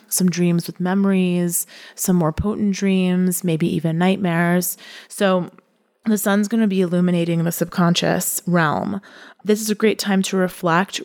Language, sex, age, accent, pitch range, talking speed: English, female, 20-39, American, 170-200 Hz, 150 wpm